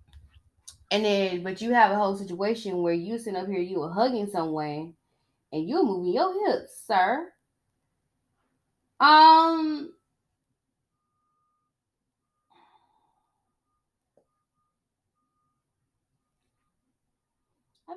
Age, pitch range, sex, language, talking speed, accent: 10-29, 150-240 Hz, female, English, 85 wpm, American